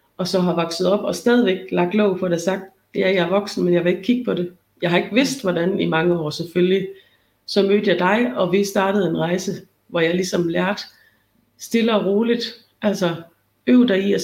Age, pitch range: 30-49, 175-210 Hz